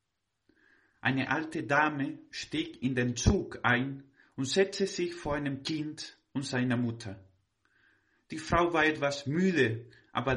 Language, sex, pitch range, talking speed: German, male, 110-150 Hz, 135 wpm